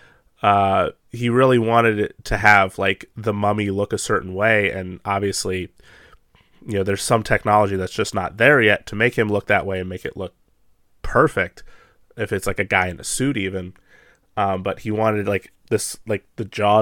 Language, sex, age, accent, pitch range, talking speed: English, male, 20-39, American, 95-115 Hz, 195 wpm